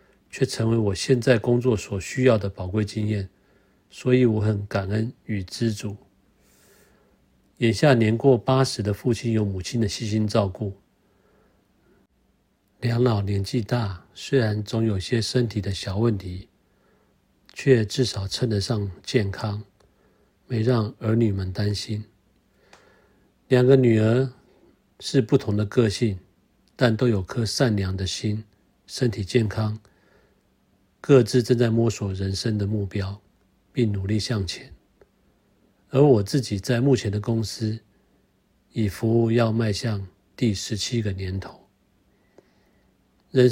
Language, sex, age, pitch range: Chinese, male, 50-69, 100-120 Hz